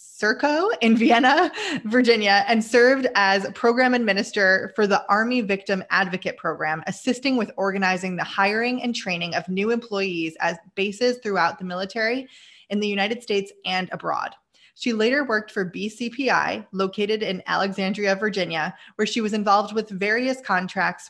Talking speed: 150 wpm